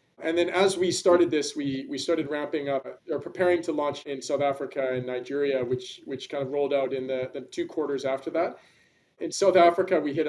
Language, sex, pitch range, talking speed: English, male, 140-170 Hz, 220 wpm